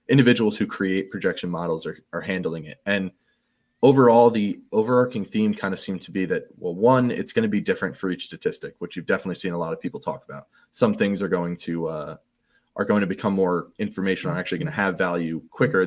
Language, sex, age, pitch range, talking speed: English, male, 20-39, 90-125 Hz, 225 wpm